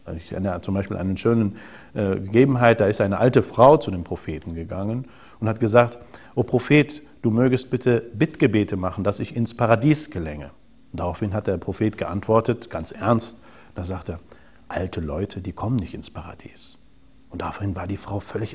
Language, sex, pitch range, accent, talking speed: German, male, 95-120 Hz, German, 185 wpm